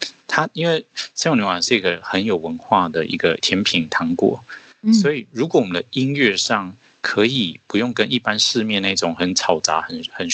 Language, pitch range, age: Chinese, 90-125 Hz, 30-49